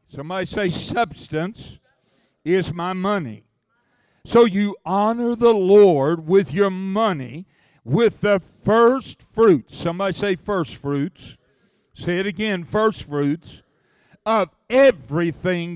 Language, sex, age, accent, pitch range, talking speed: English, male, 60-79, American, 155-200 Hz, 110 wpm